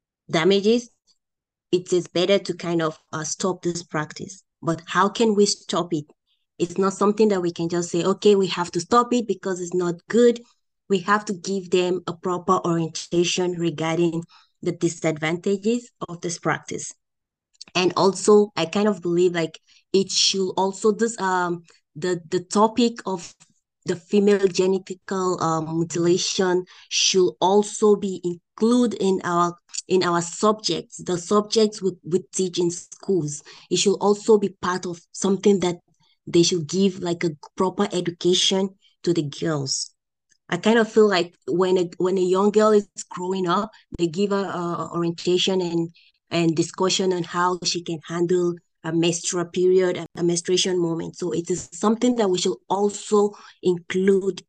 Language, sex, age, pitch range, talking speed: English, female, 20-39, 170-195 Hz, 160 wpm